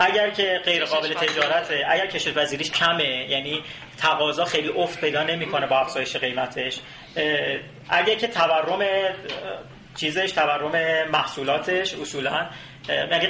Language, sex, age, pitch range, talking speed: Persian, male, 30-49, 140-185 Hz, 120 wpm